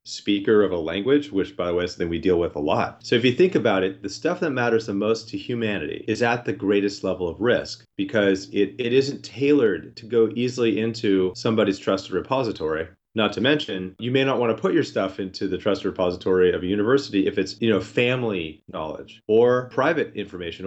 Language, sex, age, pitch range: English, male, 30-49, 95-120 Hz